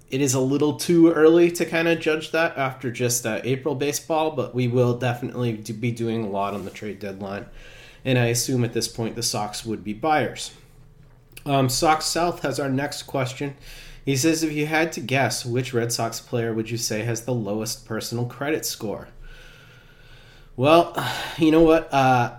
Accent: American